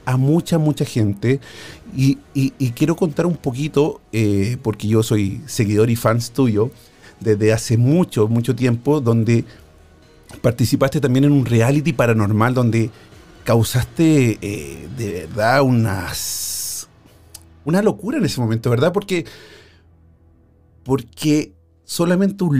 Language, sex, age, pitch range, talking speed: Spanish, male, 40-59, 110-140 Hz, 120 wpm